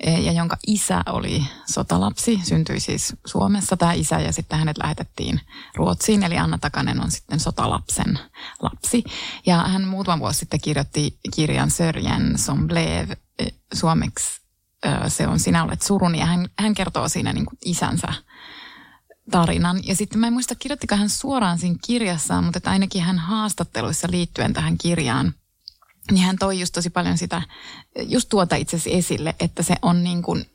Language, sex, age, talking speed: Finnish, female, 20-39, 155 wpm